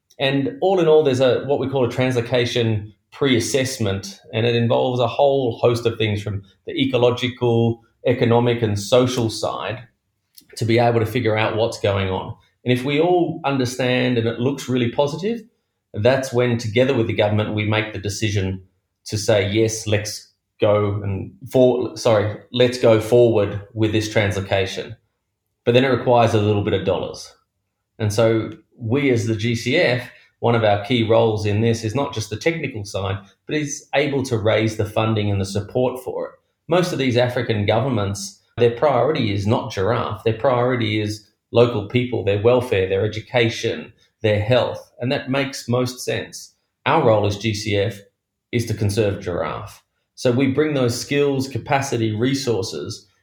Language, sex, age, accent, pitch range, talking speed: English, male, 30-49, Australian, 105-125 Hz, 170 wpm